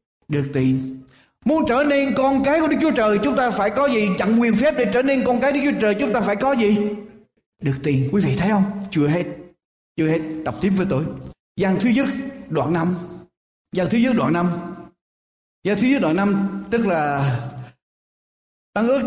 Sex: male